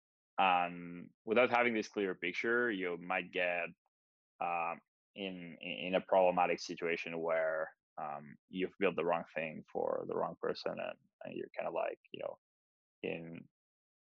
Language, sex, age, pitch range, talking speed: English, male, 20-39, 85-105 Hz, 155 wpm